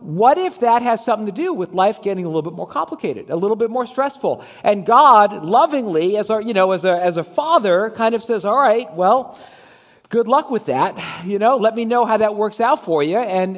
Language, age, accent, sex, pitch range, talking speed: English, 40-59, American, male, 175-230 Hz, 240 wpm